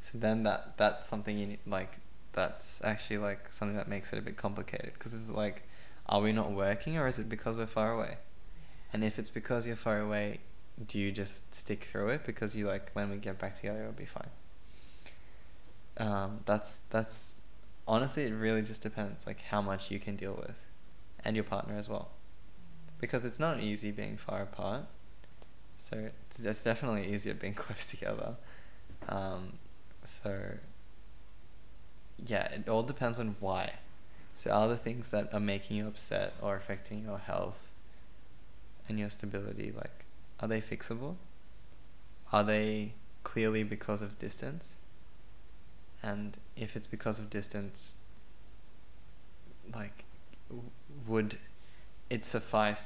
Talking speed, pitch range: 155 wpm, 100-110 Hz